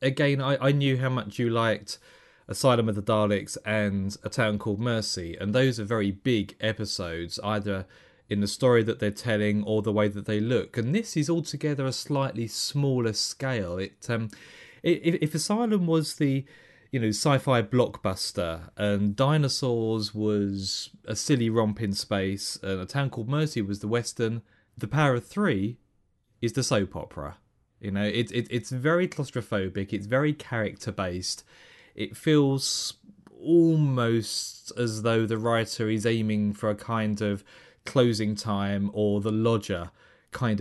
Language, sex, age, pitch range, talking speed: English, male, 30-49, 105-130 Hz, 160 wpm